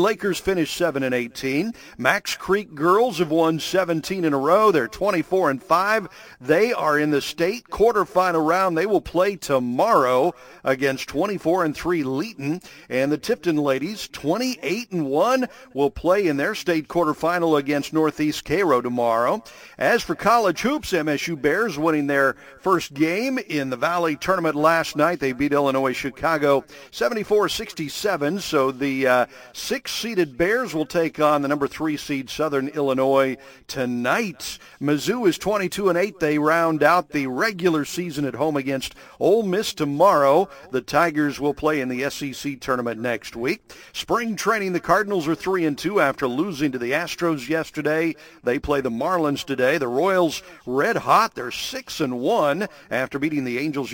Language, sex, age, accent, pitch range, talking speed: English, male, 50-69, American, 140-175 Hz, 160 wpm